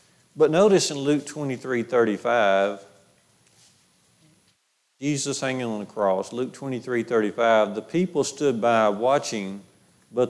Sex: male